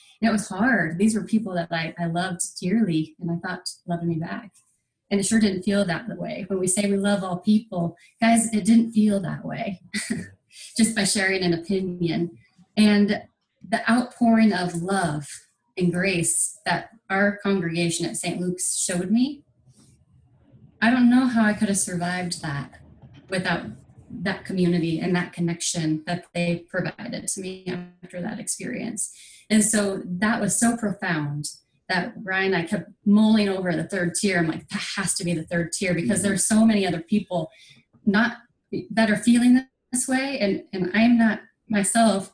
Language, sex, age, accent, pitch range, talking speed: English, female, 30-49, American, 180-220 Hz, 175 wpm